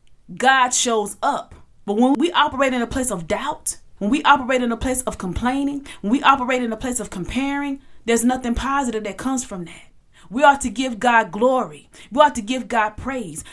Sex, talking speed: female, 210 wpm